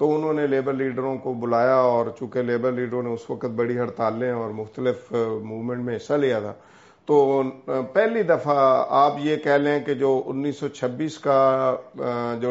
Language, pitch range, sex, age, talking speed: Urdu, 125-145 Hz, male, 50-69, 175 wpm